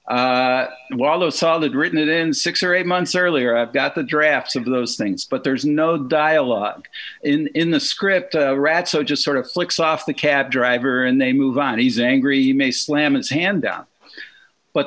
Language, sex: English, male